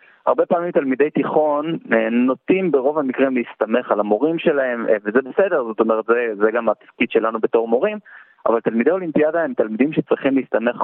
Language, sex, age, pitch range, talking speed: English, male, 30-49, 105-130 Hz, 160 wpm